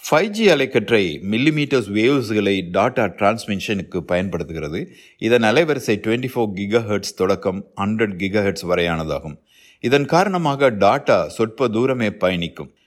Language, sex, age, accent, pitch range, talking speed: Tamil, male, 60-79, native, 95-120 Hz, 115 wpm